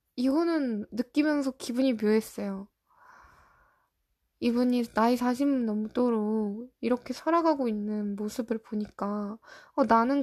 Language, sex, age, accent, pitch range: Korean, female, 20-39, native, 230-280 Hz